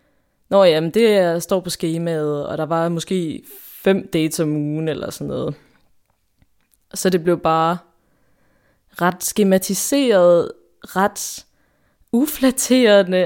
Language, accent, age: Danish, native, 20-39